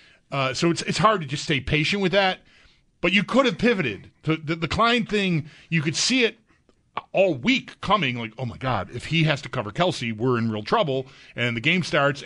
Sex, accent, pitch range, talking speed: male, American, 130-180 Hz, 225 wpm